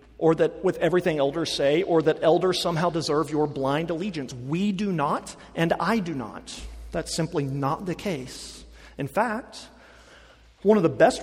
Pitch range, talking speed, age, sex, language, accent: 150-215 Hz, 170 wpm, 40-59, male, English, American